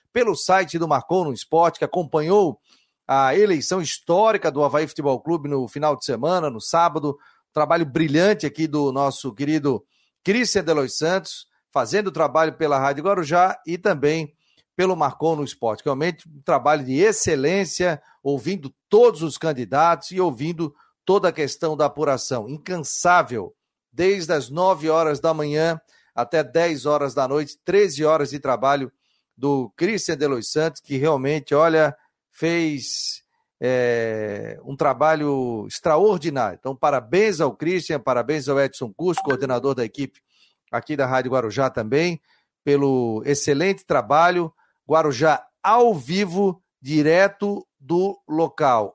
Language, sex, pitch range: Portuguese, male, 140-175 Hz